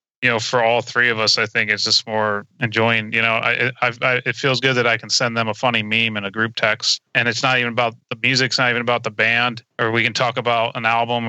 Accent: American